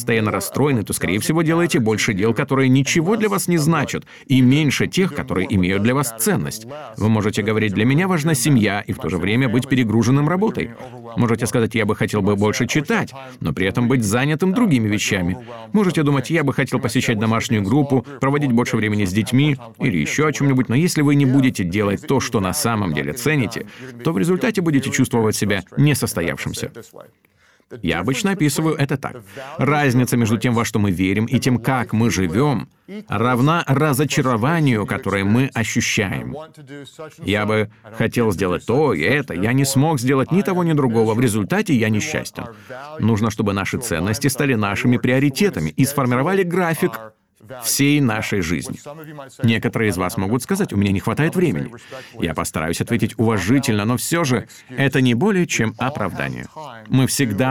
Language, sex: Russian, male